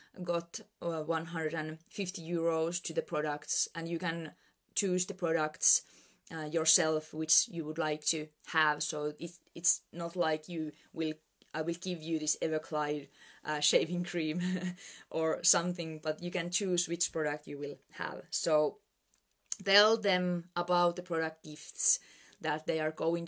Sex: female